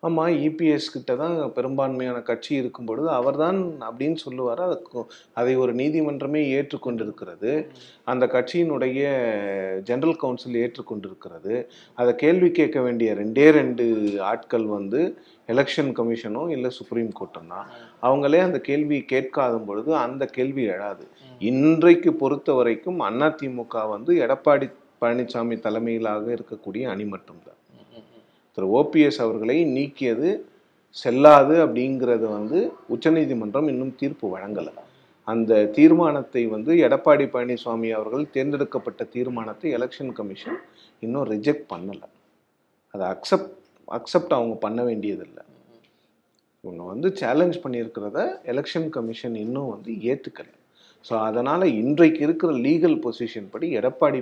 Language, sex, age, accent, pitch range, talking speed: Tamil, male, 30-49, native, 115-150 Hz, 110 wpm